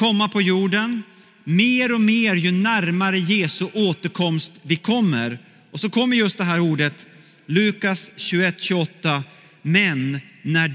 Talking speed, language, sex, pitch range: 130 wpm, Swedish, male, 165-215 Hz